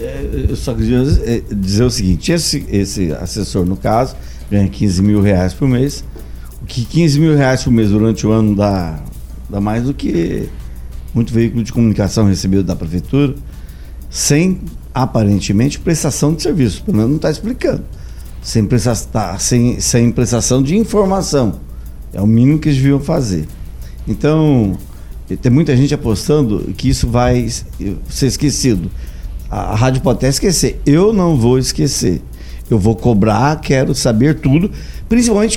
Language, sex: Portuguese, male